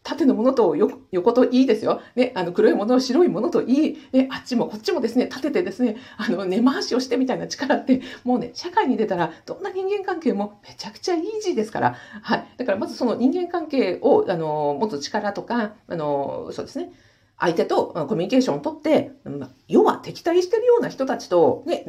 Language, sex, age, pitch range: Japanese, female, 50-69, 185-300 Hz